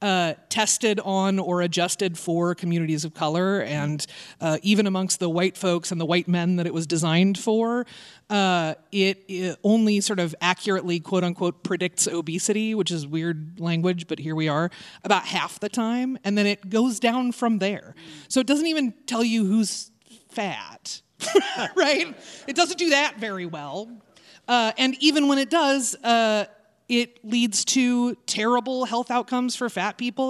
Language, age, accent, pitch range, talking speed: English, 30-49, American, 170-225 Hz, 170 wpm